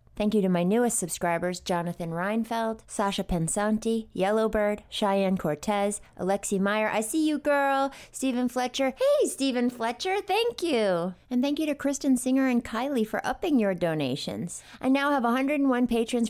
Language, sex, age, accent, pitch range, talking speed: English, female, 30-49, American, 195-245 Hz, 160 wpm